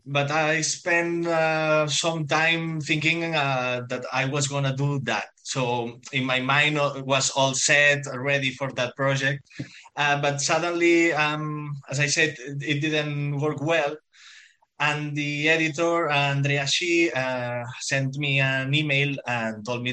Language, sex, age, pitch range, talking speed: English, male, 20-39, 120-150 Hz, 155 wpm